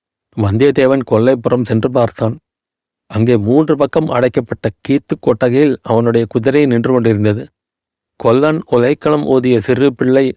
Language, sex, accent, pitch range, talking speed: Tamil, male, native, 115-140 Hz, 110 wpm